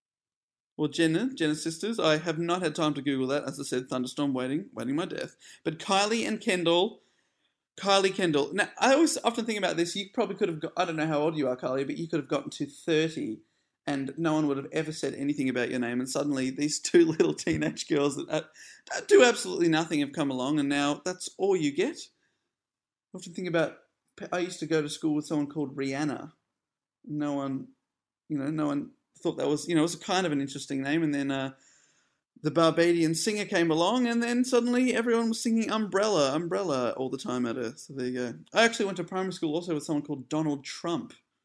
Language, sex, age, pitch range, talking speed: English, male, 30-49, 145-200 Hz, 220 wpm